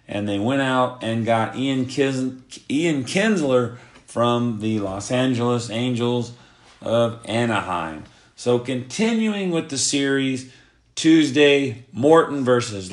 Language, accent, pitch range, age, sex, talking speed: English, American, 115-145 Hz, 40-59, male, 115 wpm